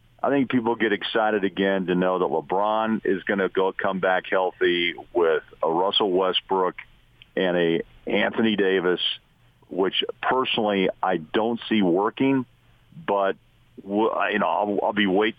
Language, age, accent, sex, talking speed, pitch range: English, 50-69, American, male, 150 wpm, 95-110 Hz